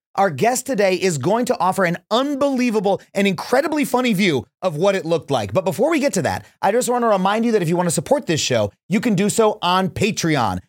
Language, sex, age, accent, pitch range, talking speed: English, male, 30-49, American, 155-220 Hz, 245 wpm